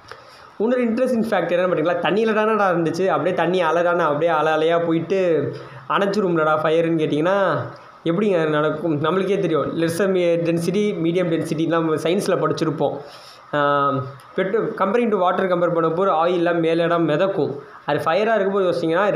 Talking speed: 135 wpm